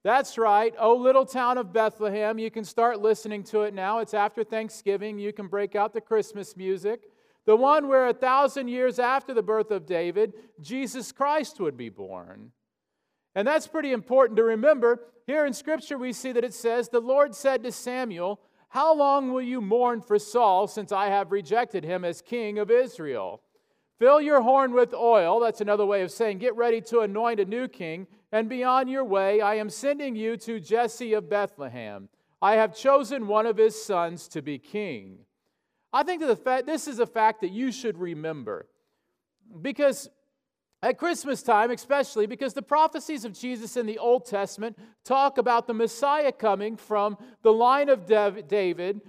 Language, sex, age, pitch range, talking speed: English, male, 40-59, 200-260 Hz, 180 wpm